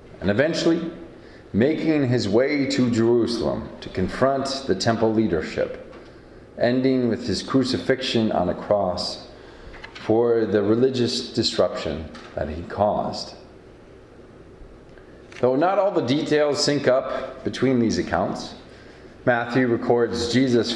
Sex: male